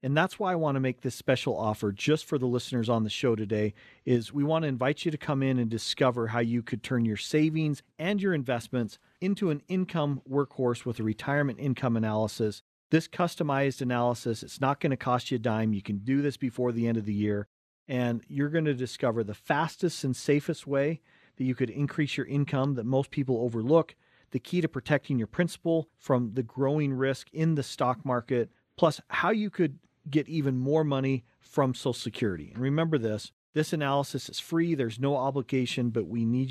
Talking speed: 205 wpm